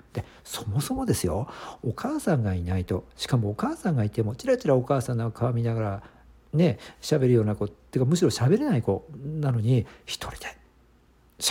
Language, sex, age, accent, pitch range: Japanese, male, 50-69, native, 90-140 Hz